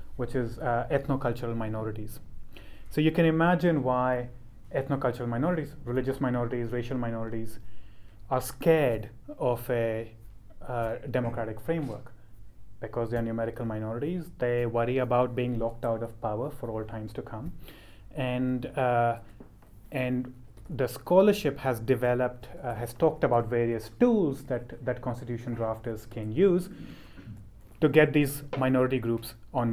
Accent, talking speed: Indian, 130 wpm